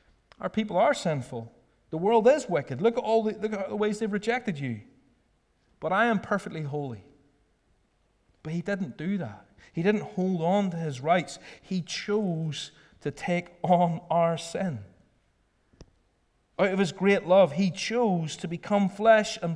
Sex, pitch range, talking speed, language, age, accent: male, 125-180 Hz, 165 wpm, English, 30-49, British